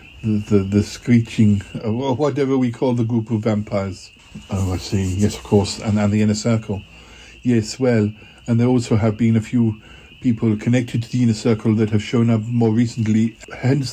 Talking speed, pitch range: 195 wpm, 105-120 Hz